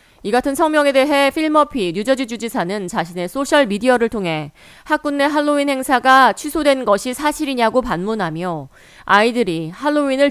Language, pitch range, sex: Korean, 185-275 Hz, female